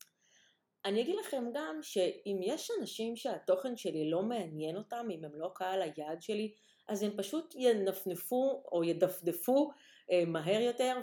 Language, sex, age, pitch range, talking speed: Hebrew, female, 30-49, 160-230 Hz, 140 wpm